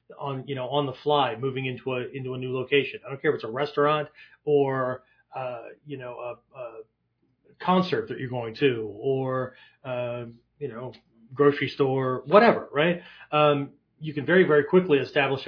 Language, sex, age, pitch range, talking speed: English, male, 40-59, 130-160 Hz, 180 wpm